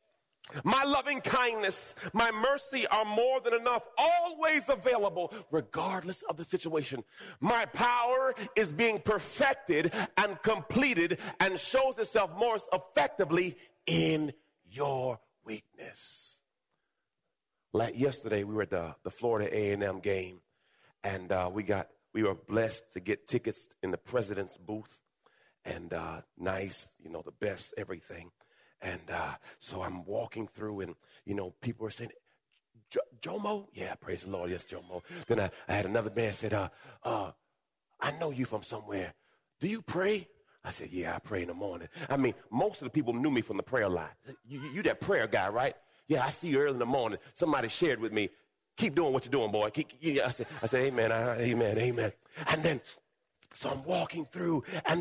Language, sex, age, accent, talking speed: English, male, 40-59, American, 175 wpm